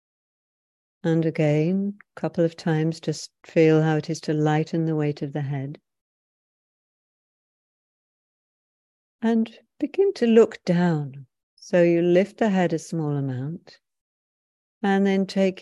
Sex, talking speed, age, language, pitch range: female, 130 wpm, 60-79, English, 150-185 Hz